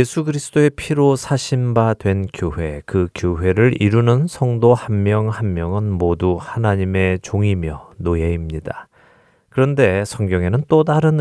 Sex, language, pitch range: male, Korean, 90-125 Hz